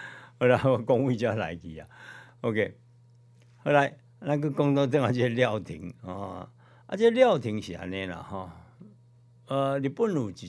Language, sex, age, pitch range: Chinese, male, 60-79, 100-125 Hz